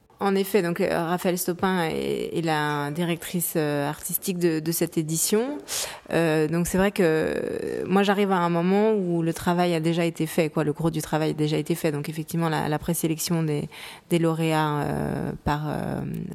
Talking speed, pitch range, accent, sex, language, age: 185 wpm, 150-175 Hz, French, female, French, 20-39